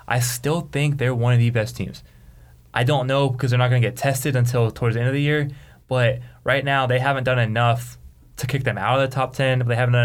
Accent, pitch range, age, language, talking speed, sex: American, 105-130 Hz, 20-39, English, 270 wpm, male